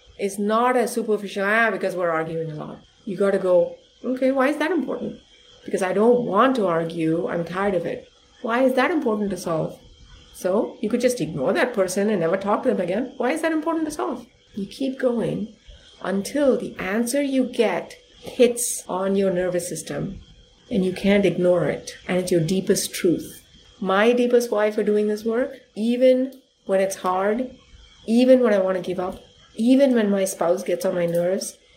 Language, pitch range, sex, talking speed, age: English, 190-250 Hz, female, 195 wpm, 30-49